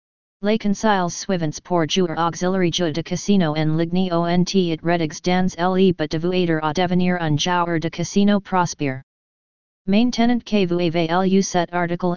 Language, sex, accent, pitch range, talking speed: French, female, American, 165-190 Hz, 155 wpm